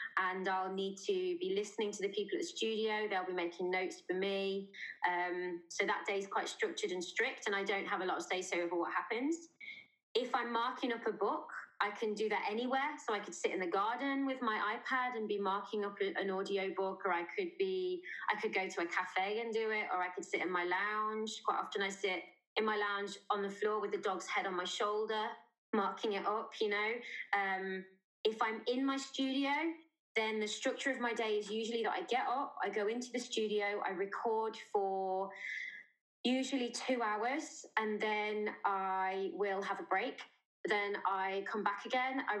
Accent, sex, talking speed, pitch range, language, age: British, female, 210 wpm, 195-255 Hz, English, 20-39